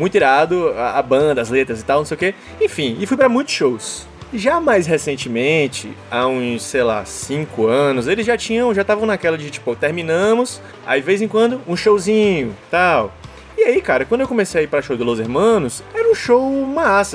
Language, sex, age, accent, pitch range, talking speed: Portuguese, male, 20-39, Brazilian, 135-215 Hz, 215 wpm